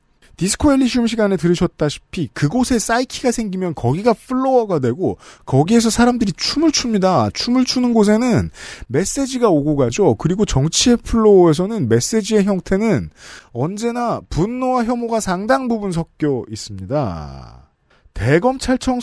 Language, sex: Korean, male